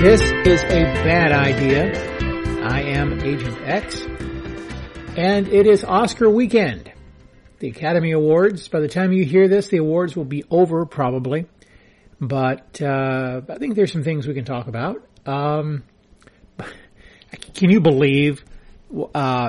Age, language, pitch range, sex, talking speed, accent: 40-59, English, 125-170 Hz, male, 140 wpm, American